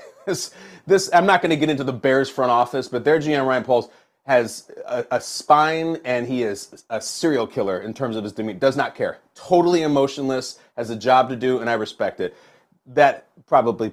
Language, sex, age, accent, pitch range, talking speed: English, male, 30-49, American, 130-160 Hz, 205 wpm